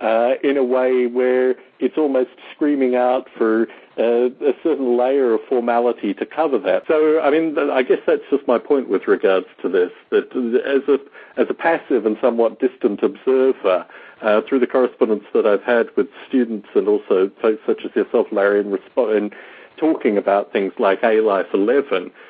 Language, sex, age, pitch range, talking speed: English, male, 60-79, 110-155 Hz, 180 wpm